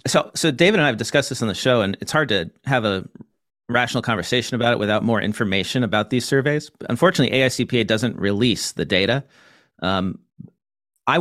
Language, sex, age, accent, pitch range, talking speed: English, male, 40-59, American, 105-130 Hz, 185 wpm